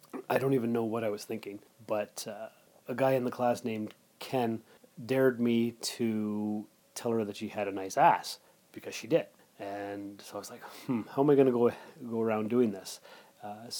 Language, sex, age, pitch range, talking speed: English, male, 30-49, 105-125 Hz, 210 wpm